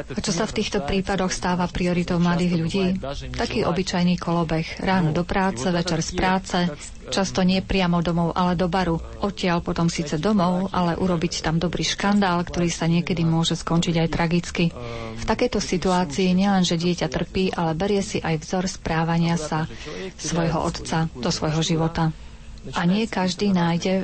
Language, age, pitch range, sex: Slovak, 30-49, 165-190 Hz, female